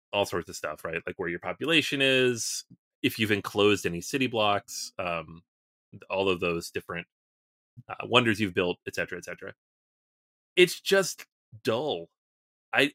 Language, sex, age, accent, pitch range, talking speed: English, male, 30-49, American, 100-145 Hz, 155 wpm